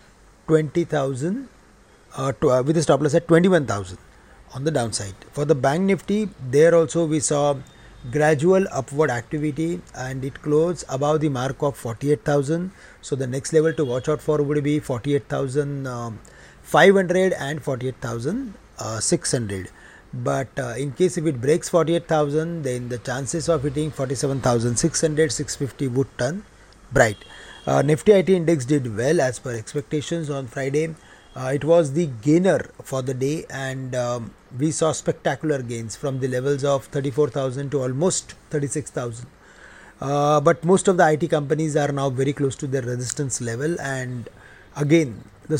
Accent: Indian